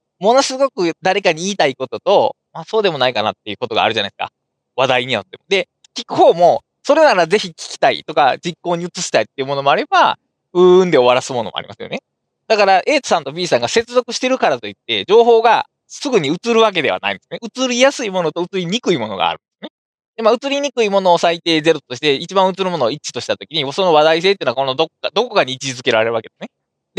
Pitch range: 155-235 Hz